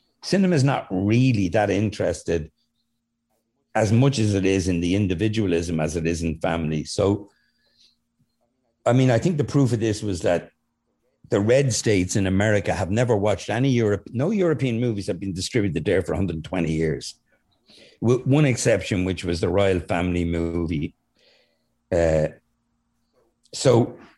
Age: 60-79